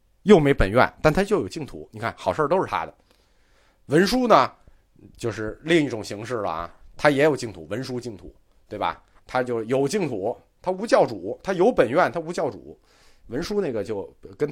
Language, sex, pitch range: Chinese, male, 100-165 Hz